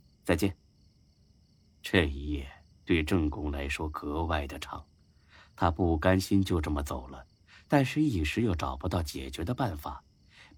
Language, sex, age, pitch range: Chinese, male, 30-49, 75-95 Hz